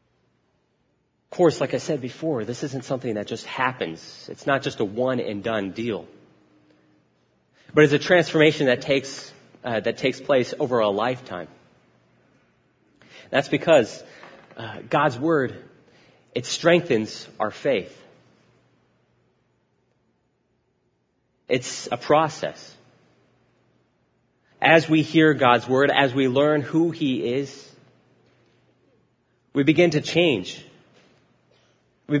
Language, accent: English, American